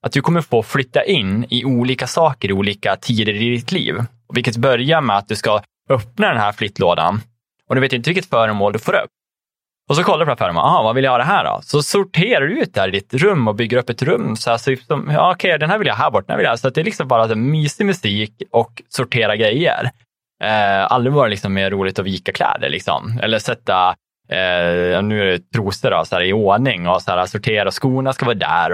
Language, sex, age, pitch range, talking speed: Swedish, male, 20-39, 100-130 Hz, 255 wpm